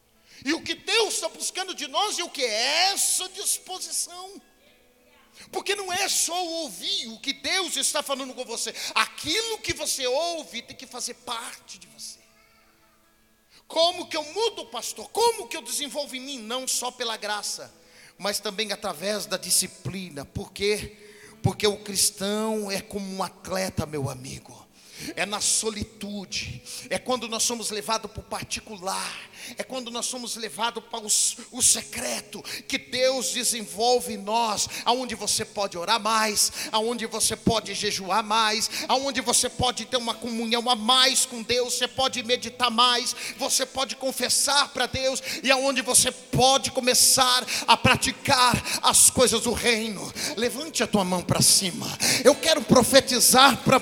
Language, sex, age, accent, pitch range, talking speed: Portuguese, male, 40-59, Brazilian, 220-270 Hz, 160 wpm